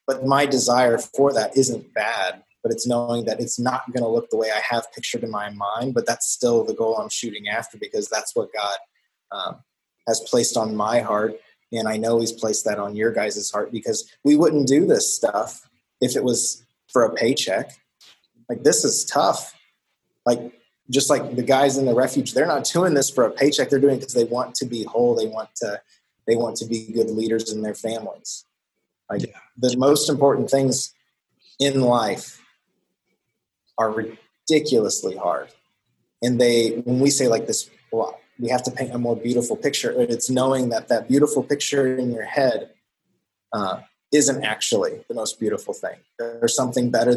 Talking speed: 190 wpm